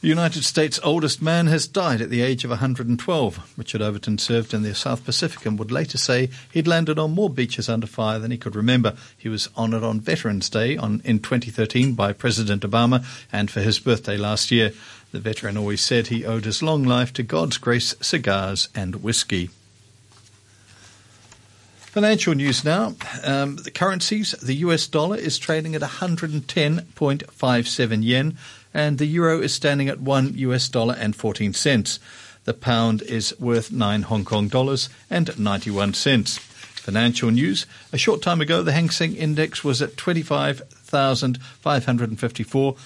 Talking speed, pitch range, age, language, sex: 160 wpm, 110-145 Hz, 50-69, English, male